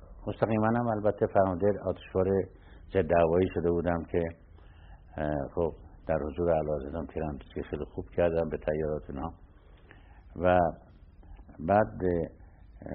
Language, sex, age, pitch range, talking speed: Persian, male, 60-79, 80-95 Hz, 105 wpm